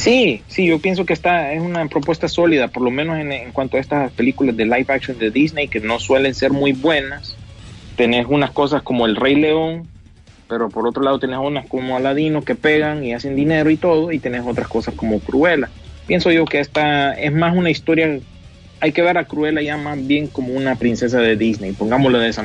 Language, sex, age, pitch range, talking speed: Spanish, male, 30-49, 120-160 Hz, 220 wpm